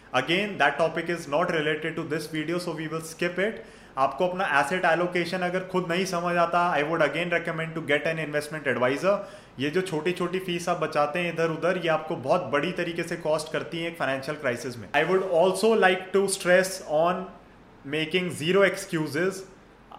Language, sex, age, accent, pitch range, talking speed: Hindi, male, 30-49, native, 155-190 Hz, 190 wpm